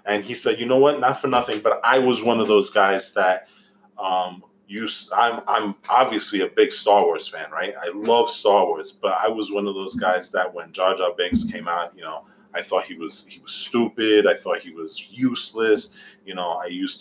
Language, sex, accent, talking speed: English, male, American, 225 wpm